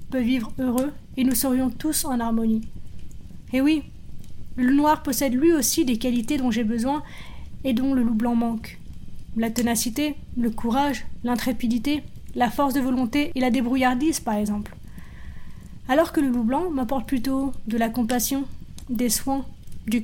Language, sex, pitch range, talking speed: French, female, 235-275 Hz, 165 wpm